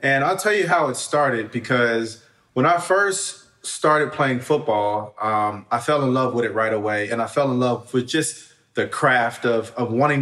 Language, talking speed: English, 205 wpm